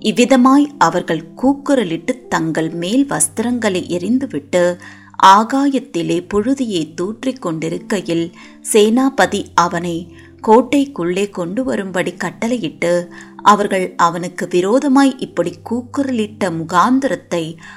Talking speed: 80 wpm